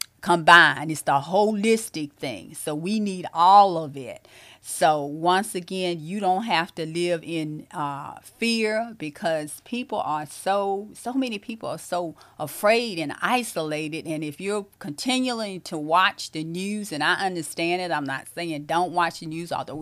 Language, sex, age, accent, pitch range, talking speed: English, female, 40-59, American, 150-185 Hz, 165 wpm